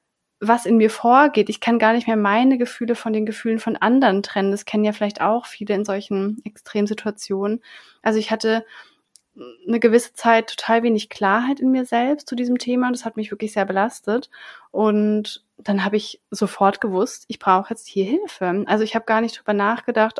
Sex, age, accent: female, 30-49, German